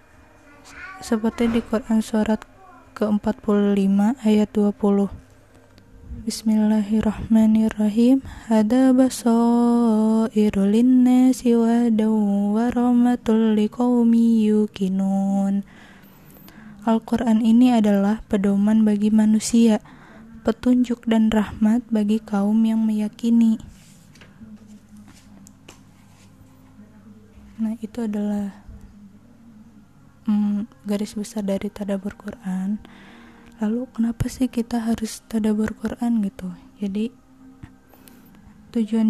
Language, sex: Indonesian, female